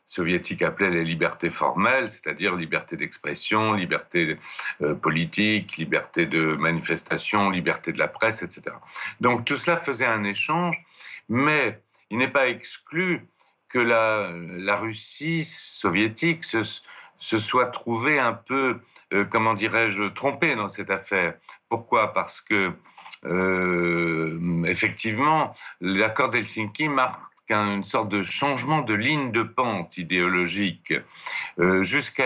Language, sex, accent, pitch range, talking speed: French, male, French, 90-120 Hz, 125 wpm